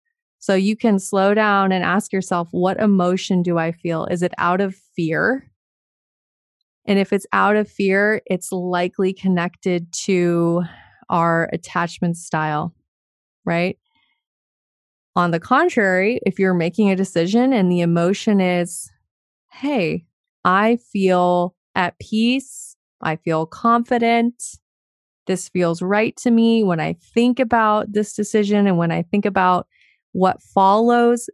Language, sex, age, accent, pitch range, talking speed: English, female, 20-39, American, 175-215 Hz, 135 wpm